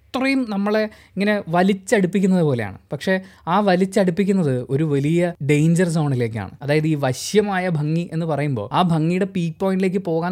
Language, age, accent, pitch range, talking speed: Malayalam, 20-39, native, 140-205 Hz, 135 wpm